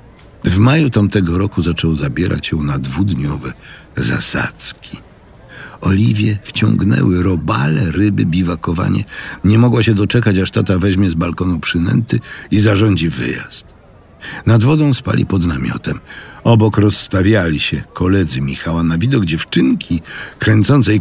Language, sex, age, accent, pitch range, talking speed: Polish, male, 60-79, native, 85-110 Hz, 120 wpm